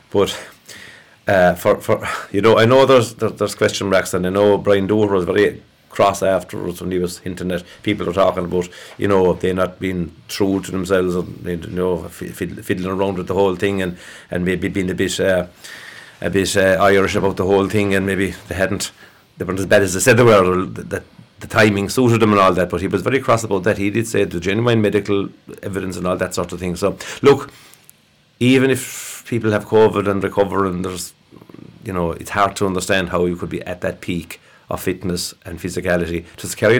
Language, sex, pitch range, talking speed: English, male, 90-105 Hz, 220 wpm